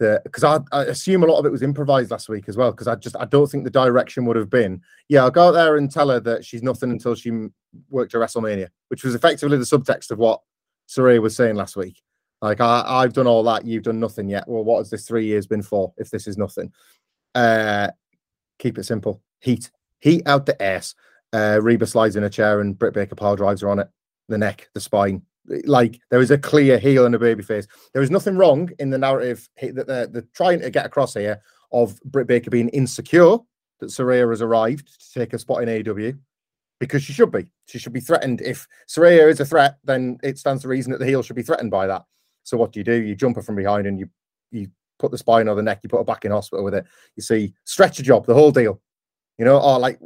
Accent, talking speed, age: British, 250 wpm, 30-49